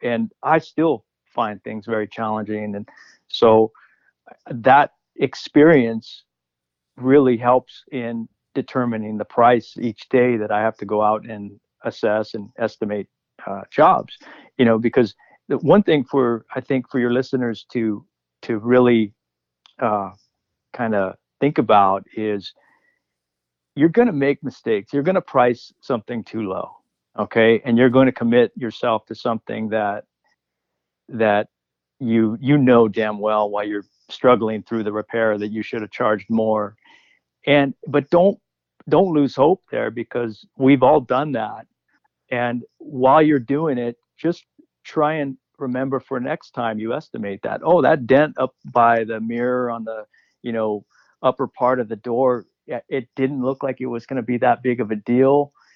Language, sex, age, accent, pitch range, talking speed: English, male, 50-69, American, 105-130 Hz, 160 wpm